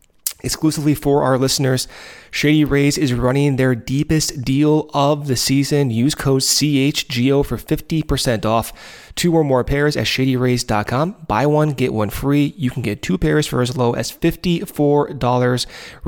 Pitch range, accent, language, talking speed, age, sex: 115-140 Hz, American, English, 155 wpm, 30-49, male